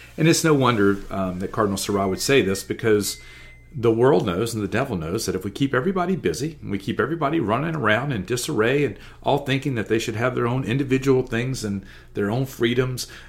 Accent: American